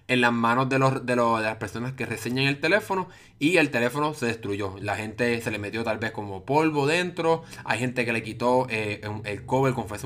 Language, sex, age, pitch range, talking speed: Spanish, male, 20-39, 110-130 Hz, 235 wpm